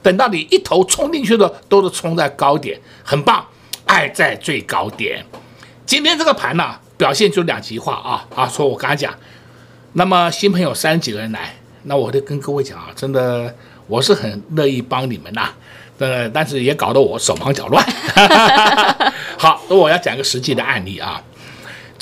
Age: 60-79